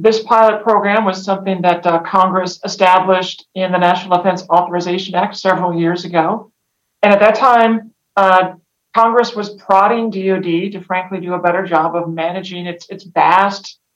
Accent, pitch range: American, 180-200 Hz